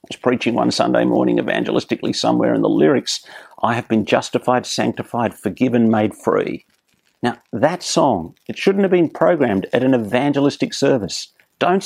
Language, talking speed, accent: English, 150 wpm, Australian